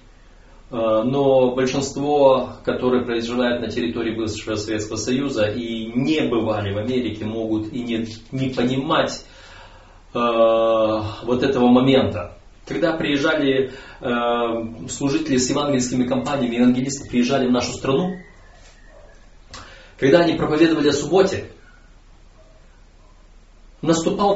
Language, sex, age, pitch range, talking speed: Russian, male, 30-49, 105-150 Hz, 100 wpm